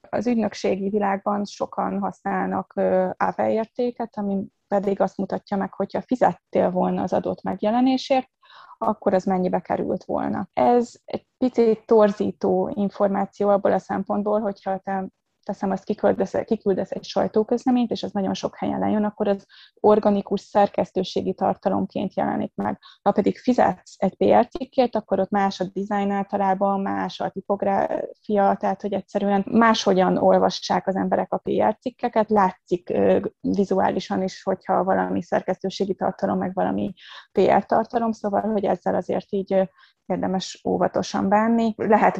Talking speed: 135 wpm